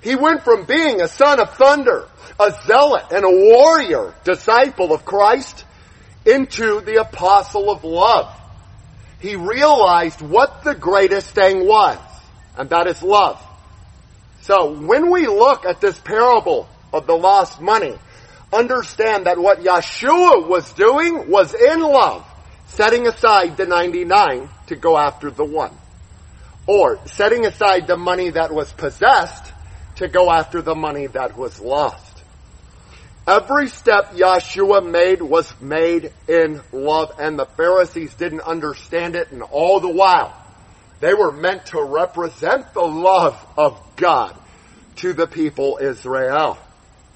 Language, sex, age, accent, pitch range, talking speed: English, male, 50-69, American, 165-270 Hz, 135 wpm